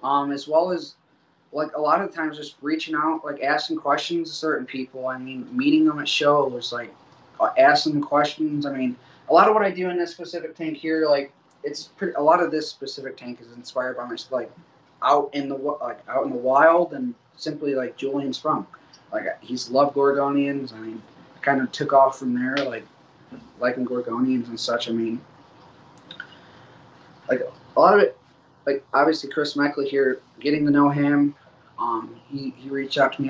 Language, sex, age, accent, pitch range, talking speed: English, male, 20-39, American, 125-150 Hz, 195 wpm